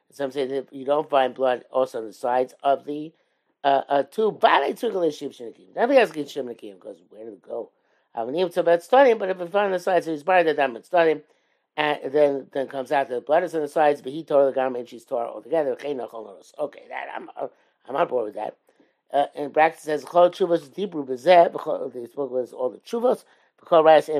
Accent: American